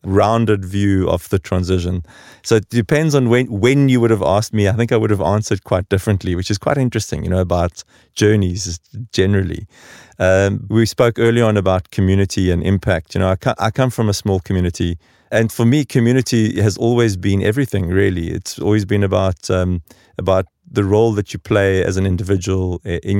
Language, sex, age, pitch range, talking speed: English, male, 30-49, 95-110 Hz, 195 wpm